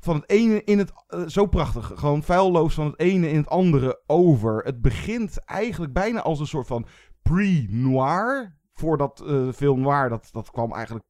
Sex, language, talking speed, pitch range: male, Dutch, 190 wpm, 125-165 Hz